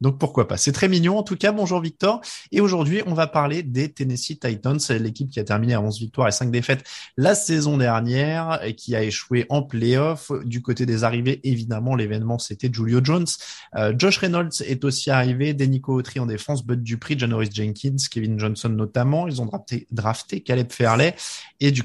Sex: male